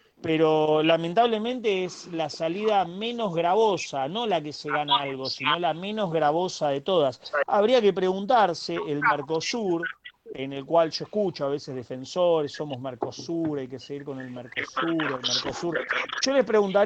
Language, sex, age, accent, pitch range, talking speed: Spanish, male, 40-59, Argentinian, 140-185 Hz, 150 wpm